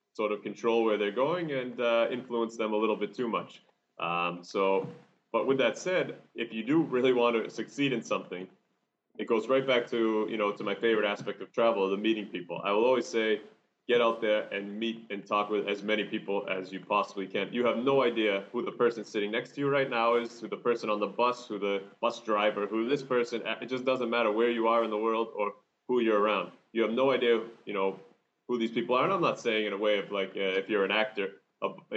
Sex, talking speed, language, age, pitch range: male, 245 wpm, English, 30-49, 105-120 Hz